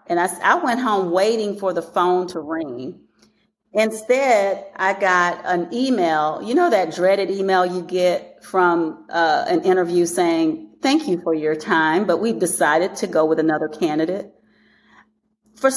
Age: 40-59